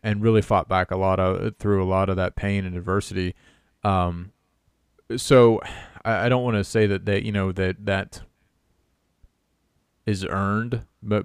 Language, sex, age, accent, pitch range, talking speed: English, male, 30-49, American, 90-105 Hz, 170 wpm